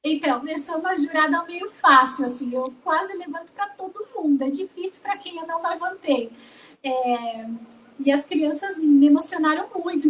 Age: 10-29